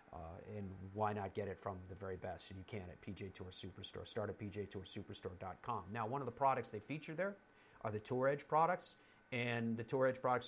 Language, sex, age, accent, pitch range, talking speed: English, male, 40-59, American, 115-140 Hz, 220 wpm